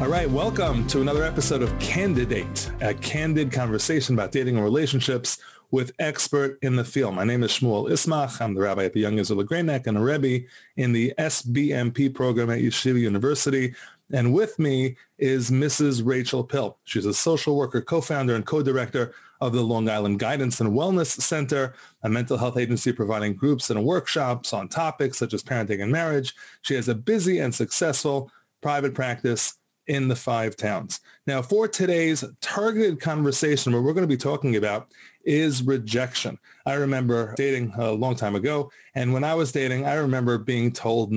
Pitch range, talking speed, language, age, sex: 115-145 Hz, 180 wpm, English, 30-49, male